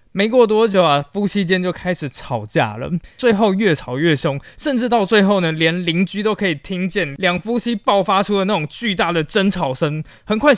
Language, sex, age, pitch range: Chinese, male, 20-39, 140-195 Hz